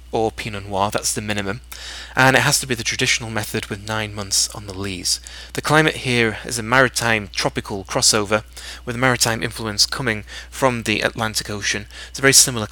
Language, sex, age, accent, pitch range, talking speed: English, male, 30-49, British, 95-120 Hz, 195 wpm